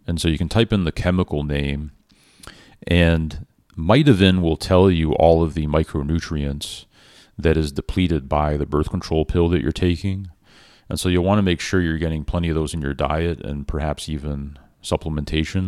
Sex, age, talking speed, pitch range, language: male, 40-59, 185 wpm, 75-90 Hz, English